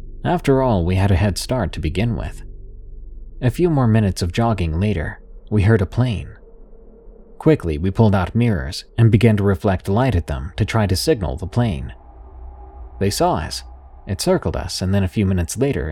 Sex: male